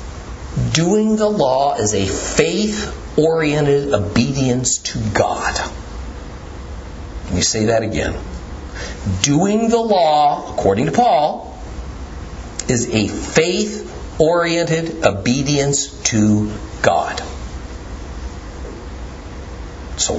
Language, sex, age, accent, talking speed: English, male, 50-69, American, 80 wpm